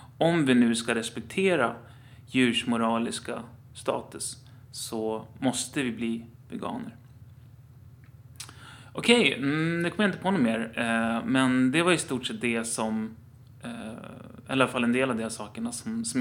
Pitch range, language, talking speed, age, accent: 115-130 Hz, Swedish, 150 wpm, 30-49, native